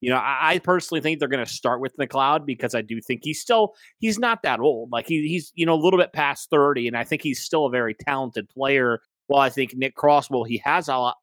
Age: 30-49